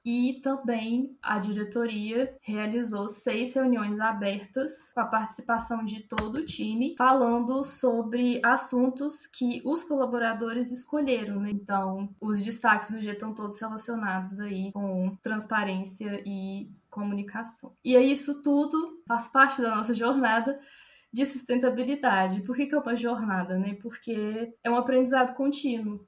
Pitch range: 205-250 Hz